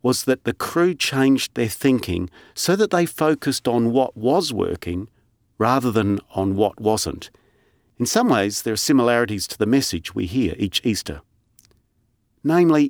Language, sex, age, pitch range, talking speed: English, male, 40-59, 100-135 Hz, 160 wpm